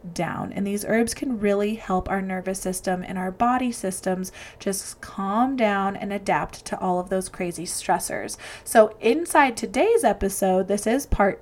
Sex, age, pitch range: female, 20-39, 195-235 Hz